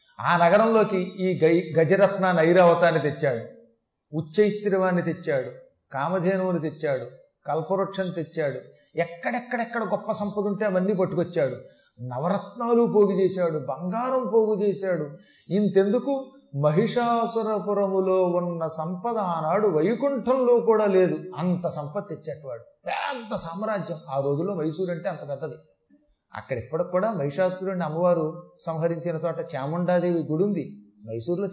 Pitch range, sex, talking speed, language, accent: 165-210 Hz, male, 100 wpm, Telugu, native